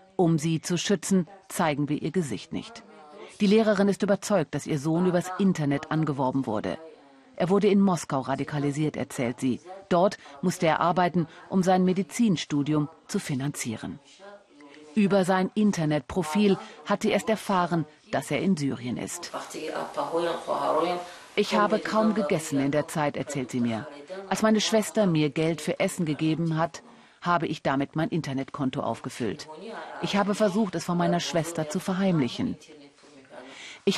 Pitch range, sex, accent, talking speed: 145-195 Hz, female, German, 145 wpm